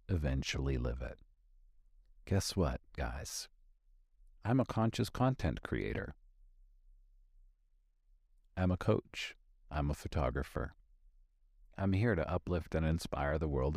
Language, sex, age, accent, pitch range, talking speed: English, male, 50-69, American, 75-105 Hz, 110 wpm